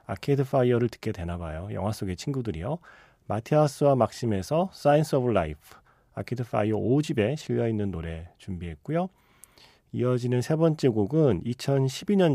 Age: 40-59